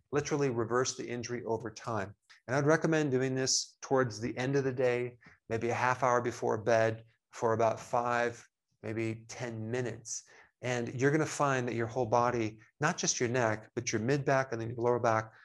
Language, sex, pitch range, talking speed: English, male, 115-135 Hz, 195 wpm